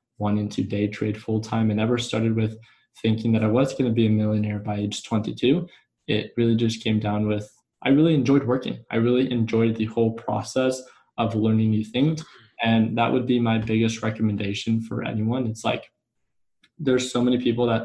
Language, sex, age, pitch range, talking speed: English, male, 20-39, 105-120 Hz, 200 wpm